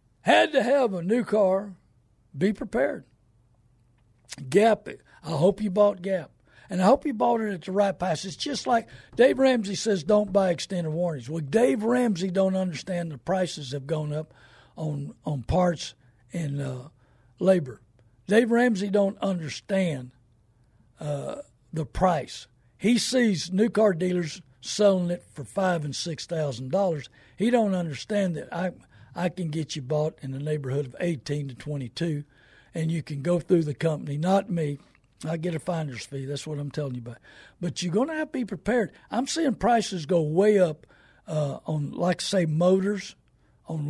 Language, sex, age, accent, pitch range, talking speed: English, male, 60-79, American, 140-205 Hz, 175 wpm